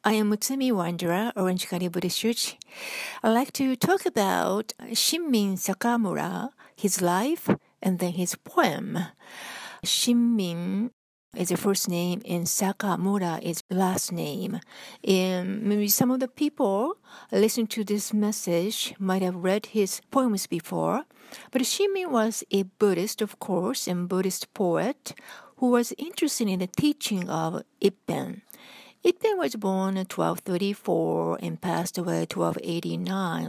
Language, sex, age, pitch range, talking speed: English, female, 60-79, 180-235 Hz, 135 wpm